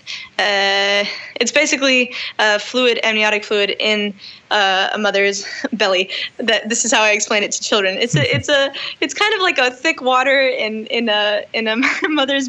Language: English